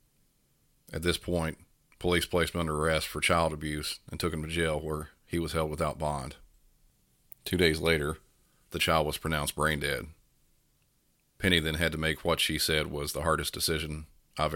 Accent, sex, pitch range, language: American, male, 75-85 Hz, English